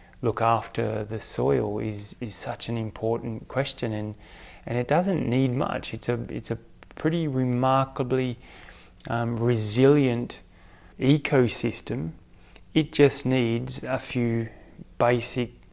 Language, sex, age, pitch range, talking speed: English, male, 20-39, 110-125 Hz, 120 wpm